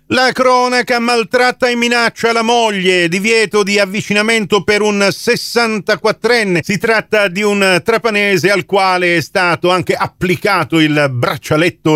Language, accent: Italian, native